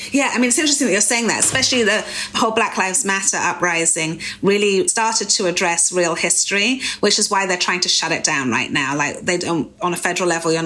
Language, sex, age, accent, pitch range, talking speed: English, female, 30-49, British, 160-200 Hz, 230 wpm